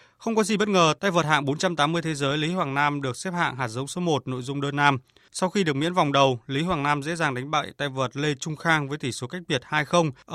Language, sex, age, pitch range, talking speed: Vietnamese, male, 20-39, 130-170 Hz, 285 wpm